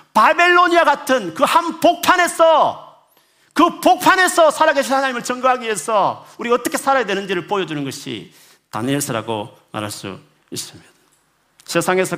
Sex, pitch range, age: male, 175-290 Hz, 40-59